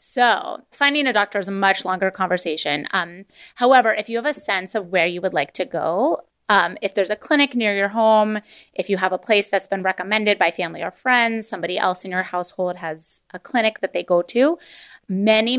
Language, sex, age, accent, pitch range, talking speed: English, female, 20-39, American, 180-220 Hz, 215 wpm